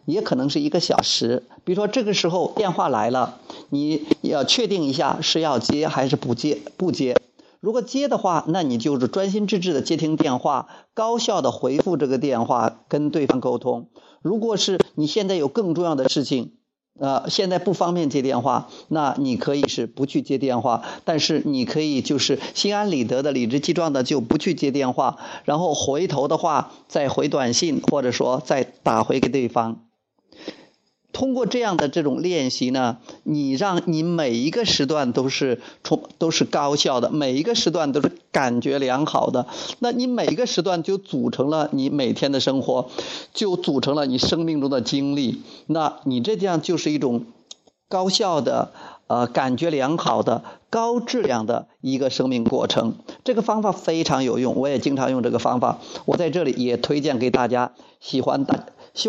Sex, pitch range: male, 135-205 Hz